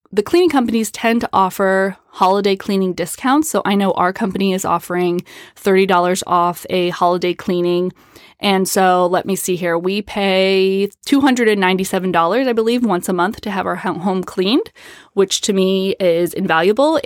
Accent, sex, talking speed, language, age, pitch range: American, female, 160 wpm, English, 20-39, 175-205 Hz